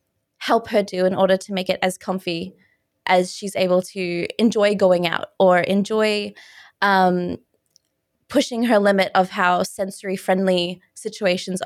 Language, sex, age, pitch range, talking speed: English, female, 20-39, 185-215 Hz, 145 wpm